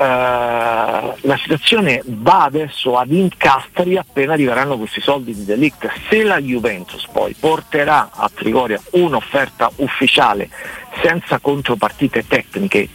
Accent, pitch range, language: native, 120-150 Hz, Italian